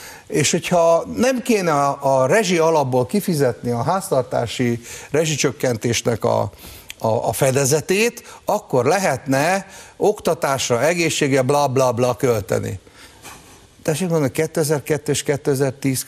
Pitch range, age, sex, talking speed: 125-185 Hz, 50-69, male, 95 wpm